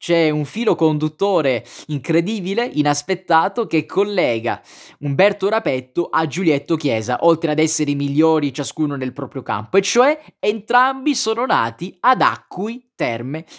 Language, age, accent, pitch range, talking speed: Italian, 20-39, native, 145-195 Hz, 135 wpm